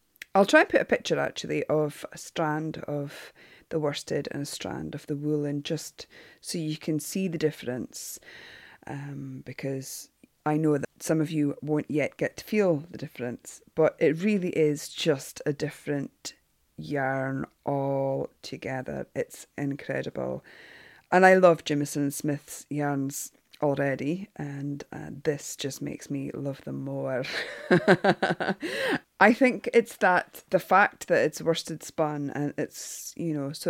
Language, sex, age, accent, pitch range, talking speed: English, female, 30-49, British, 140-165 Hz, 150 wpm